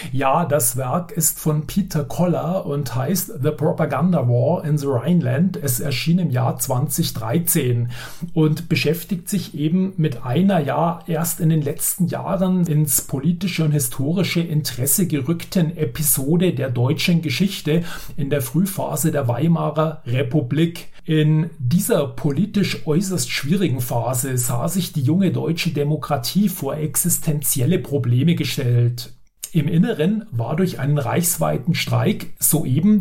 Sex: male